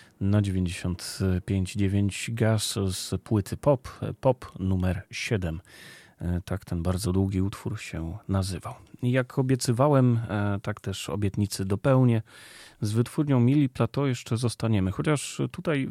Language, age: Polish, 30-49